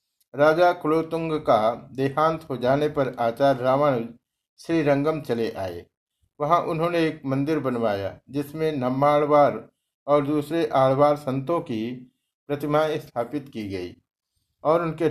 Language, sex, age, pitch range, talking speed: Hindi, male, 60-79, 120-155 Hz, 125 wpm